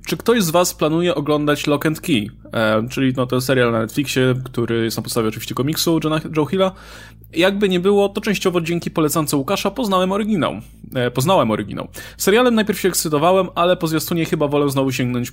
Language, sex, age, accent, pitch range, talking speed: Polish, male, 20-39, native, 130-185 Hz, 190 wpm